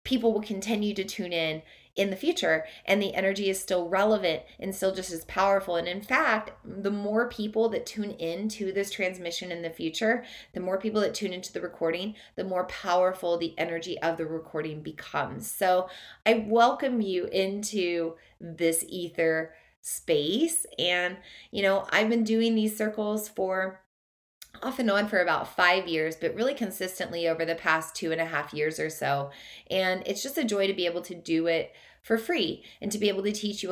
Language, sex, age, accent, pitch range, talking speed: English, female, 20-39, American, 165-205 Hz, 190 wpm